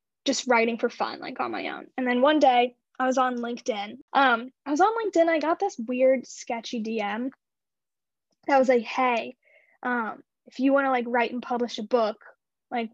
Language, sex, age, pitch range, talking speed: English, female, 10-29, 230-275 Hz, 200 wpm